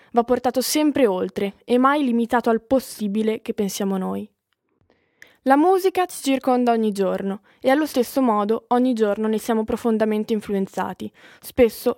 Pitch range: 205-250 Hz